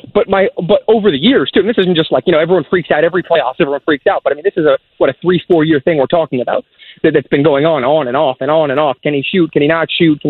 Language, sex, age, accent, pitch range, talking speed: English, male, 30-49, American, 155-245 Hz, 325 wpm